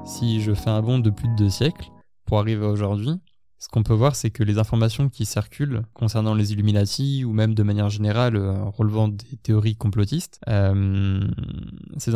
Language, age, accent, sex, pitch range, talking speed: French, 20-39, French, male, 110-130 Hz, 190 wpm